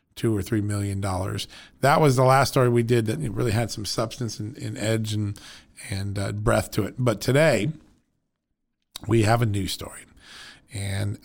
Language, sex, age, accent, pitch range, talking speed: English, male, 40-59, American, 105-130 Hz, 175 wpm